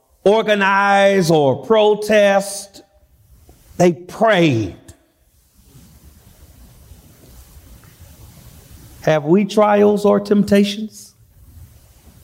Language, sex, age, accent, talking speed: English, male, 50-69, American, 50 wpm